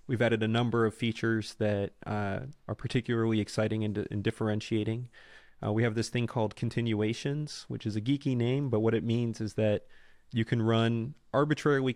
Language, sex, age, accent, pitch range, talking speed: English, male, 30-49, American, 110-130 Hz, 180 wpm